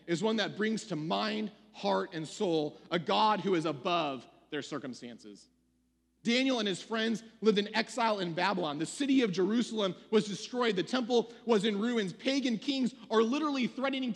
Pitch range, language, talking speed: 155-235 Hz, English, 175 wpm